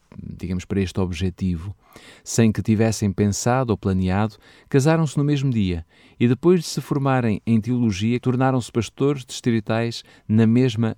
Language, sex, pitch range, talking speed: Portuguese, male, 105-140 Hz, 140 wpm